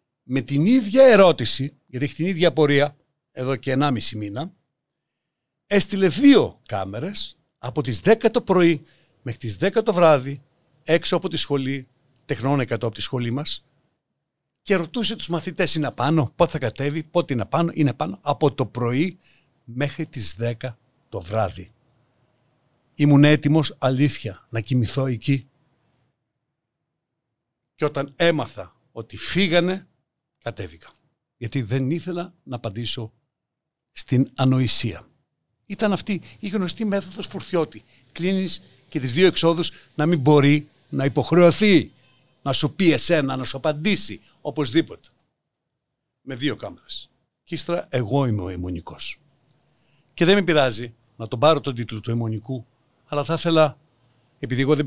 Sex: male